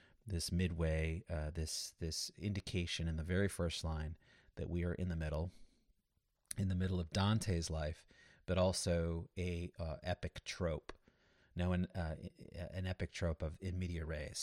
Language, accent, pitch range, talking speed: English, American, 85-95 Hz, 160 wpm